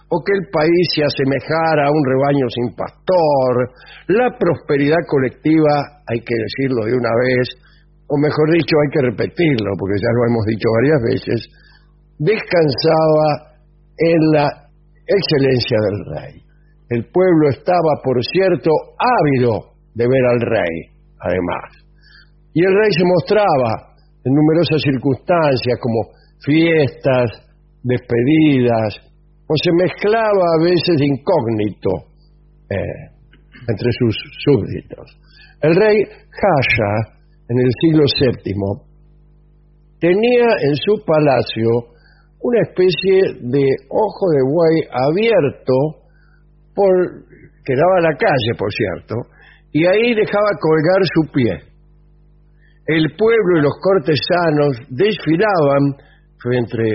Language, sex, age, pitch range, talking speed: English, male, 50-69, 125-160 Hz, 115 wpm